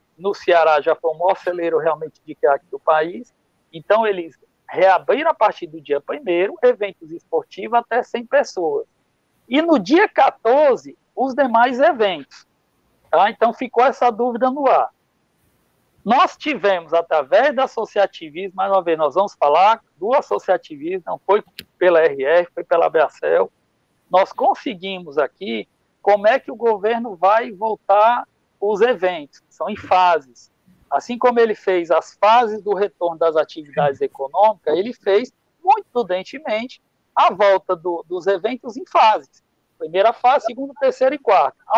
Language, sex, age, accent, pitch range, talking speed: Portuguese, male, 60-79, Brazilian, 185-260 Hz, 145 wpm